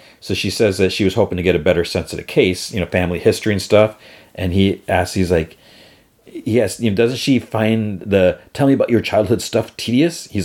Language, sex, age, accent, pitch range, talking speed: English, male, 40-59, American, 90-115 Hz, 225 wpm